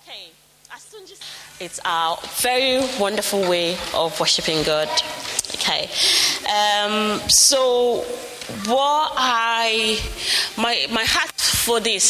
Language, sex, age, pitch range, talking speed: English, female, 20-39, 180-230 Hz, 90 wpm